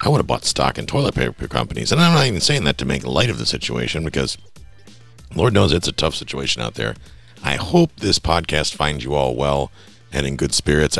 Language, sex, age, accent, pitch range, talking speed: English, male, 50-69, American, 70-90 Hz, 230 wpm